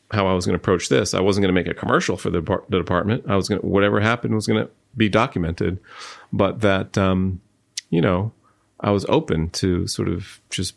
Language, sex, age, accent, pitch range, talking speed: English, male, 30-49, American, 90-105 Hz, 225 wpm